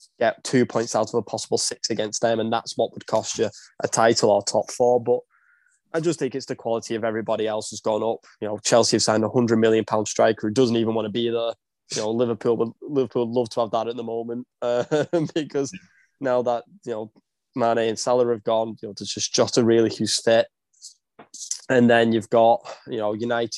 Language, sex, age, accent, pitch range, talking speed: English, male, 10-29, British, 110-125 Hz, 230 wpm